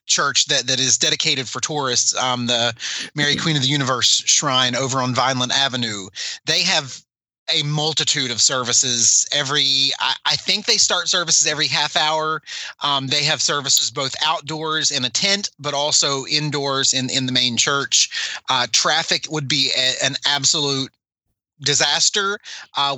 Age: 30-49